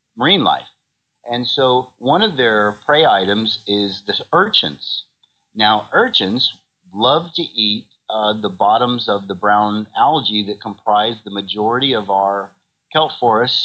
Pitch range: 105-130 Hz